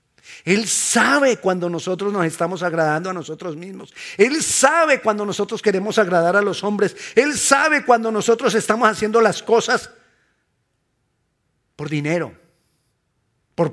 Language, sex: Spanish, male